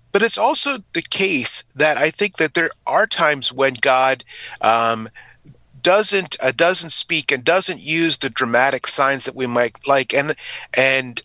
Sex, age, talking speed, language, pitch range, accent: male, 30-49, 165 wpm, English, 130-175 Hz, American